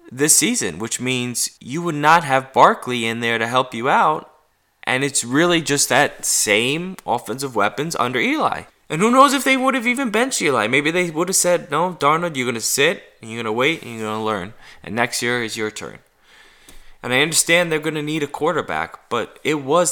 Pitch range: 100-145 Hz